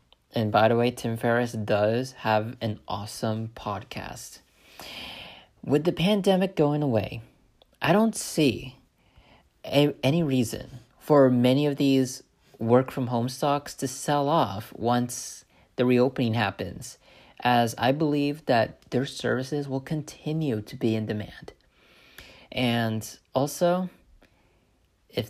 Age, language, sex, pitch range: 30-49, English, male, 115-150 Hz